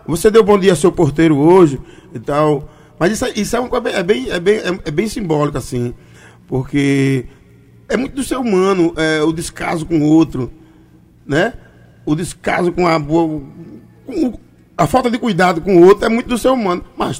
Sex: male